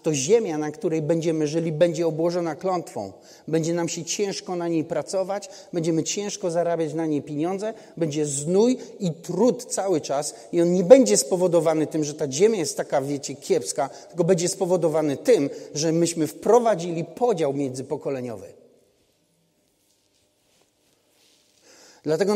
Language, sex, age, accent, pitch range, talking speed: Polish, male, 40-59, native, 150-185 Hz, 135 wpm